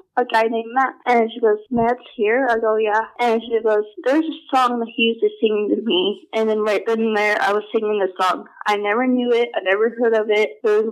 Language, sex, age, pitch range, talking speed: English, female, 20-39, 210-245 Hz, 255 wpm